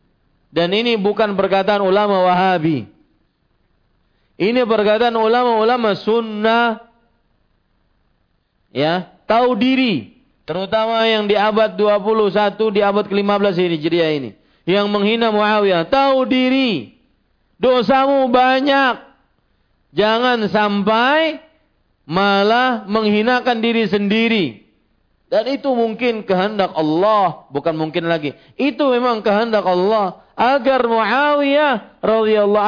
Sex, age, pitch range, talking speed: male, 40-59, 155-235 Hz, 95 wpm